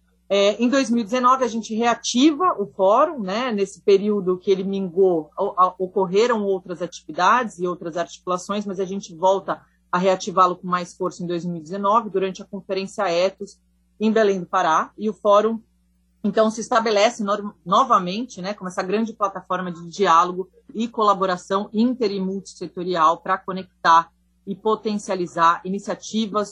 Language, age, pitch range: Portuguese, 30-49, 180-210 Hz